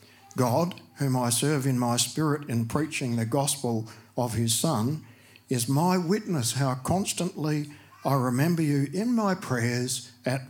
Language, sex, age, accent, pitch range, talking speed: English, male, 60-79, Australian, 115-150 Hz, 150 wpm